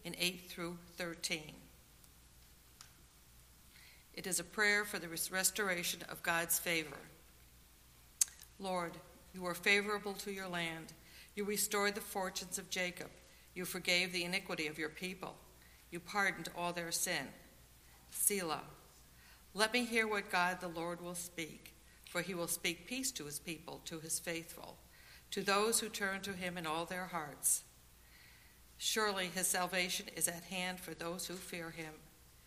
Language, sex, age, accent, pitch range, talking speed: English, female, 60-79, American, 165-190 Hz, 150 wpm